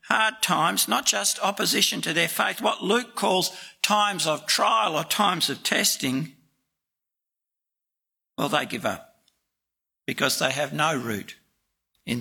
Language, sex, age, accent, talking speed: English, male, 60-79, Australian, 140 wpm